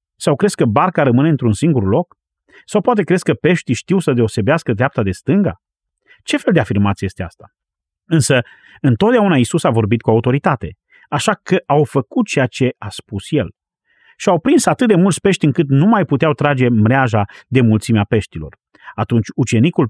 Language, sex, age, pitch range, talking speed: Romanian, male, 30-49, 110-160 Hz, 180 wpm